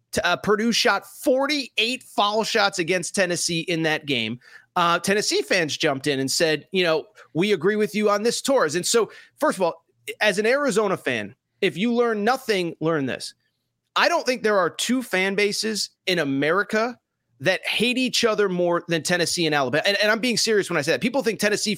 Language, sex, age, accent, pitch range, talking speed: English, male, 30-49, American, 170-225 Hz, 200 wpm